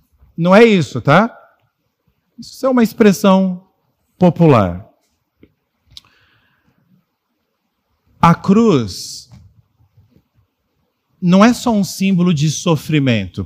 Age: 50-69